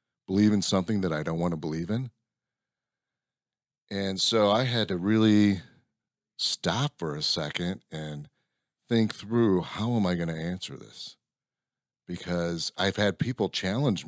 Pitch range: 85-120 Hz